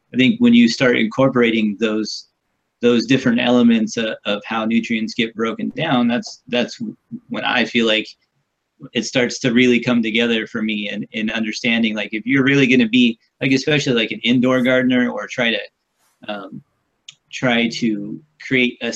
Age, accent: 30-49, American